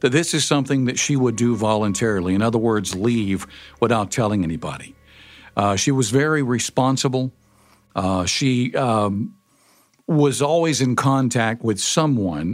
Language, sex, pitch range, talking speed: English, male, 110-130 Hz, 145 wpm